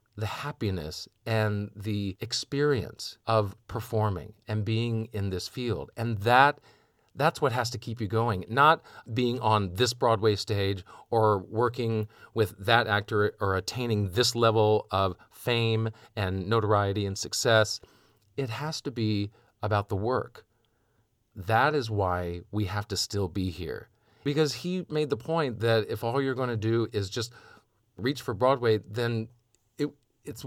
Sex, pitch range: male, 105-125 Hz